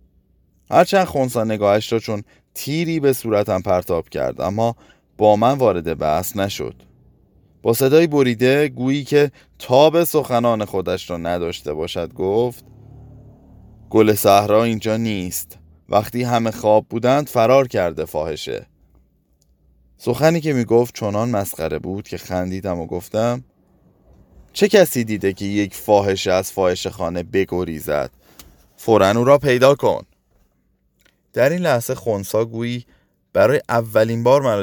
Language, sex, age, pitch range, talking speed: Persian, male, 20-39, 90-125 Hz, 130 wpm